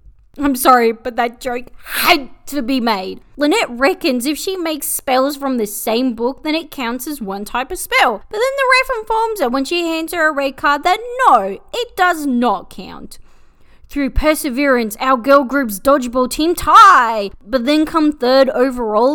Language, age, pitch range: English, 20-39, 235-320 Hz